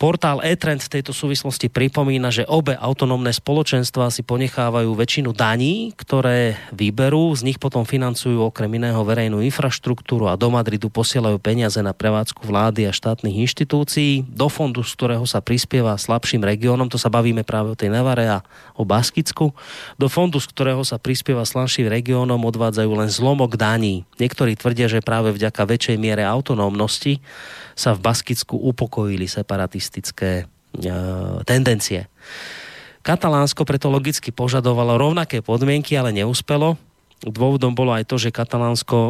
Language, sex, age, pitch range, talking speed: Slovak, male, 30-49, 110-130 Hz, 145 wpm